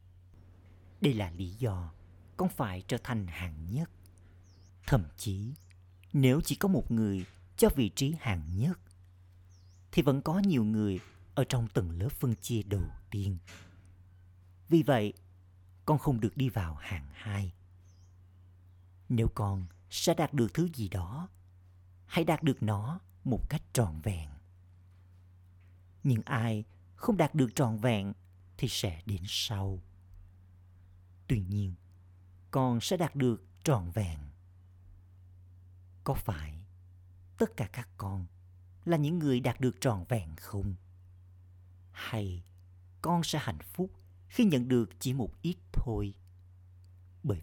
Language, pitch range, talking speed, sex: Vietnamese, 90-120 Hz, 135 wpm, male